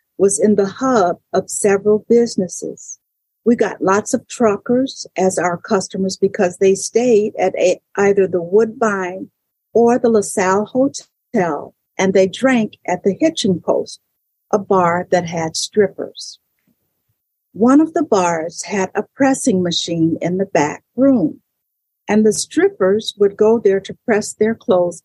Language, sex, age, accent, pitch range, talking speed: English, female, 50-69, American, 180-230 Hz, 145 wpm